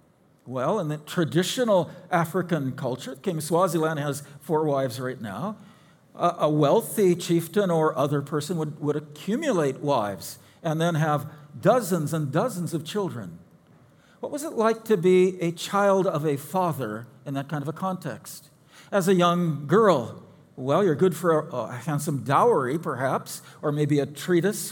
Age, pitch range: 50-69, 145-185 Hz